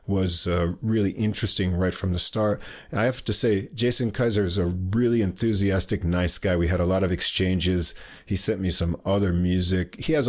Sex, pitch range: male, 85-115 Hz